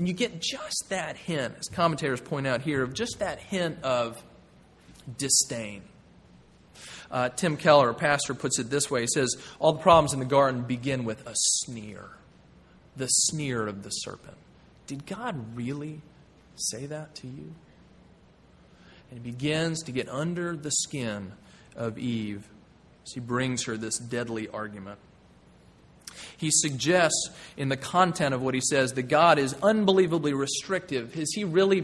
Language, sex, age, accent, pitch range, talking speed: English, male, 30-49, American, 130-180 Hz, 160 wpm